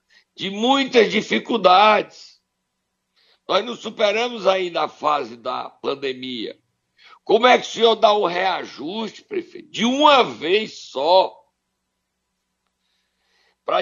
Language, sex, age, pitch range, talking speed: Portuguese, male, 60-79, 180-270 Hz, 115 wpm